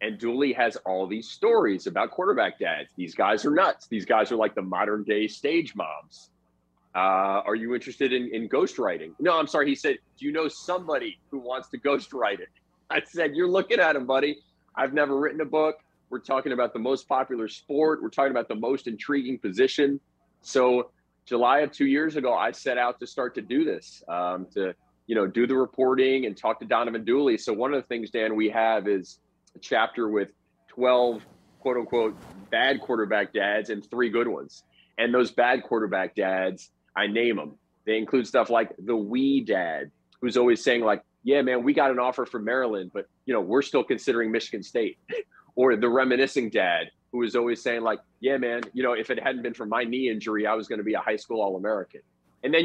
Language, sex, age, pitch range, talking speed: English, male, 30-49, 110-140 Hz, 210 wpm